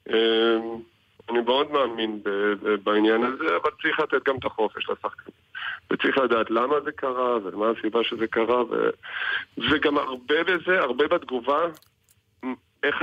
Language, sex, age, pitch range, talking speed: Hebrew, male, 50-69, 110-130 Hz, 145 wpm